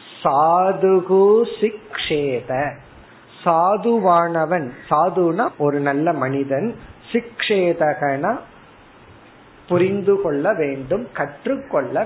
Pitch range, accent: 145-200 Hz, native